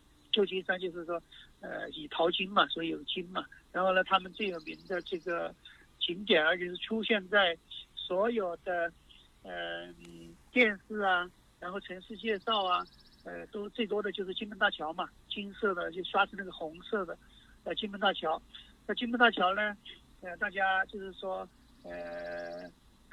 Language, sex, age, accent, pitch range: Chinese, male, 50-69, native, 170-205 Hz